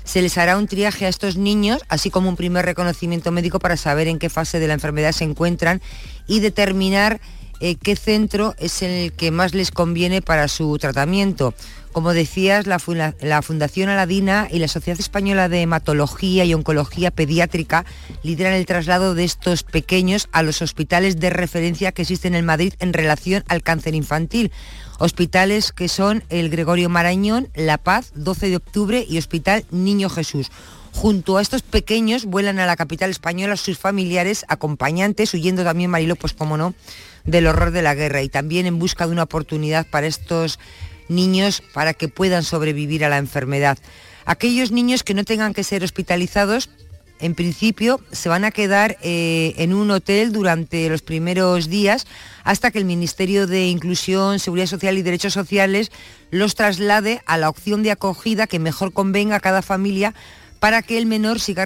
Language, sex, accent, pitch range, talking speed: Spanish, female, Spanish, 165-200 Hz, 175 wpm